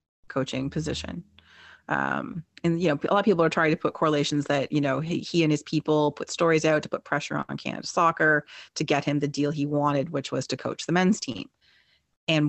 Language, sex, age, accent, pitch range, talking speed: English, female, 30-49, American, 145-175 Hz, 225 wpm